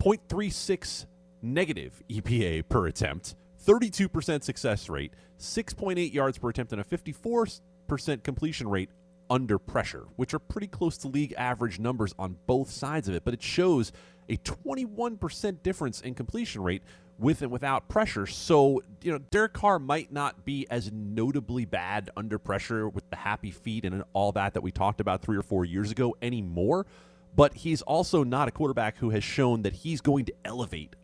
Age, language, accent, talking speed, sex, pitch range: 30-49, English, American, 170 wpm, male, 95-145 Hz